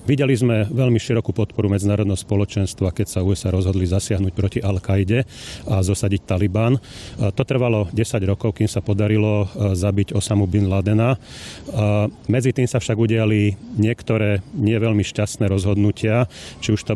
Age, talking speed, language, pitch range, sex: 40-59, 140 wpm, Slovak, 100-115 Hz, male